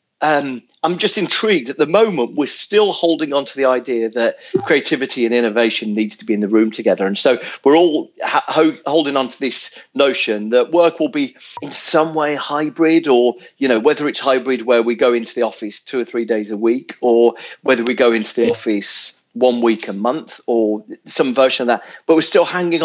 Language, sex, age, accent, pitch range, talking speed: English, male, 40-59, British, 115-155 Hz, 220 wpm